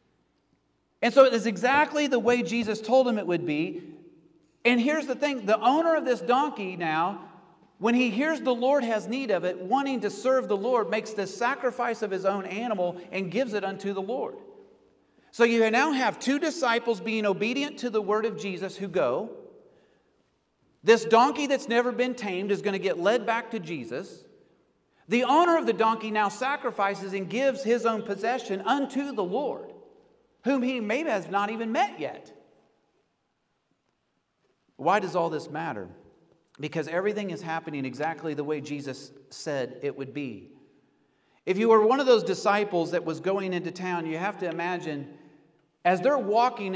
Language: English